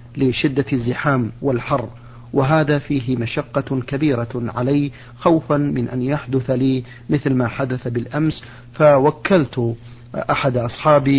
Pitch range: 120-140 Hz